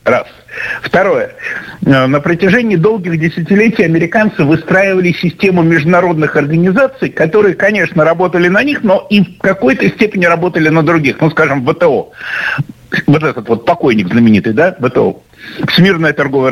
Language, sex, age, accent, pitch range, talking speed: Russian, male, 50-69, native, 155-210 Hz, 130 wpm